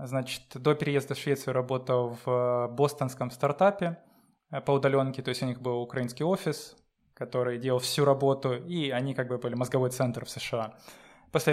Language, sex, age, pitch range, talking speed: Russian, male, 20-39, 125-150 Hz, 165 wpm